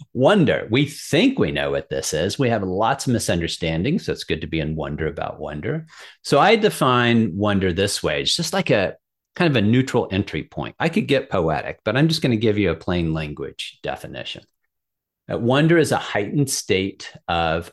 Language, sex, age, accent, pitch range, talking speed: English, male, 40-59, American, 85-125 Hz, 200 wpm